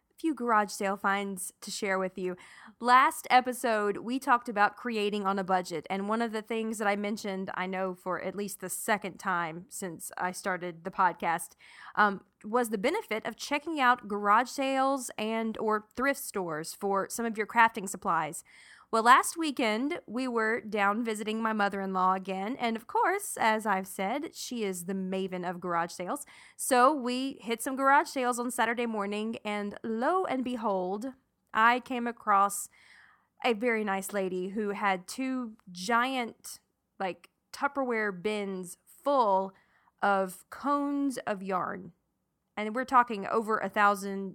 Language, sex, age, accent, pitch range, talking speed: English, female, 20-39, American, 195-245 Hz, 160 wpm